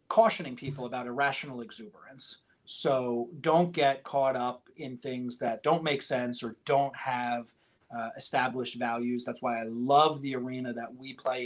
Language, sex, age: English, male, 30-49